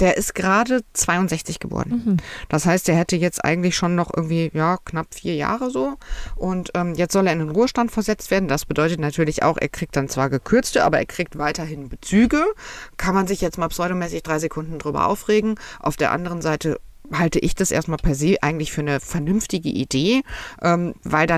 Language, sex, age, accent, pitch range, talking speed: German, female, 50-69, German, 150-190 Hz, 195 wpm